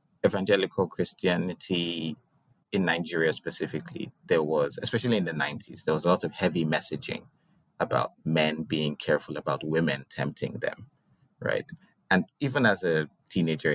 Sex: male